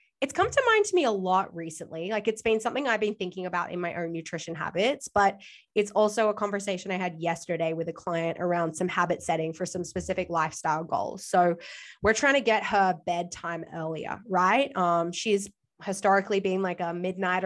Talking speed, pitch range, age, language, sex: 200 wpm, 175-230 Hz, 20-39, English, female